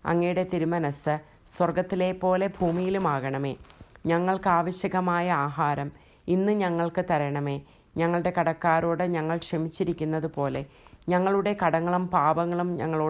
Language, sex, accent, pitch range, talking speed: English, female, Indian, 155-175 Hz, 110 wpm